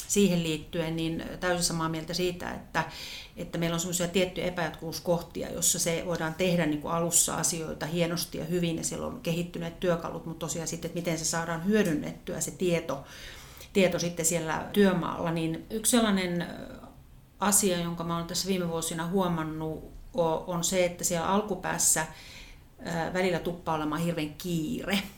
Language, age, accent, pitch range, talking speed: Finnish, 40-59, native, 160-180 Hz, 150 wpm